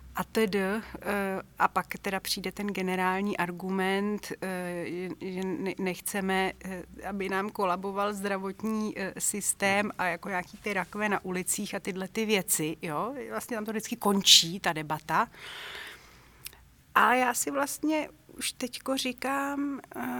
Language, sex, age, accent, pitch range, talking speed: Czech, female, 30-49, native, 190-235 Hz, 125 wpm